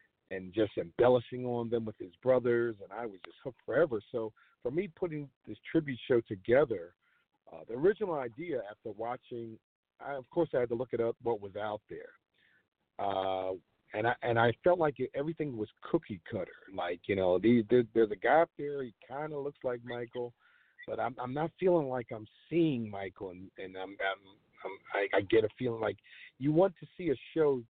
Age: 50-69